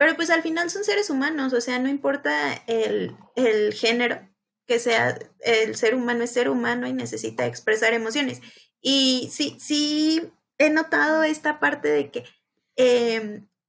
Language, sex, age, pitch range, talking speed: Spanish, female, 20-39, 220-255 Hz, 160 wpm